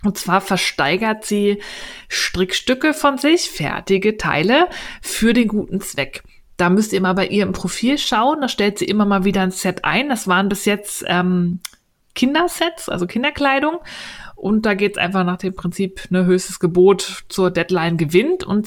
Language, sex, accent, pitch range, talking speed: German, female, German, 180-210 Hz, 175 wpm